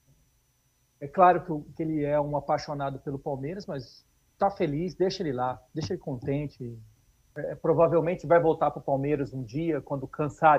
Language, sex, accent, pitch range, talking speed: Portuguese, male, Brazilian, 130-165 Hz, 165 wpm